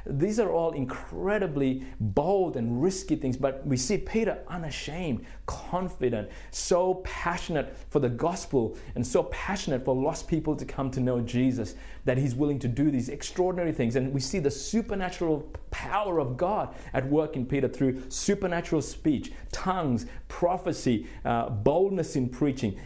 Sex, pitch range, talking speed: male, 120-165 Hz, 155 wpm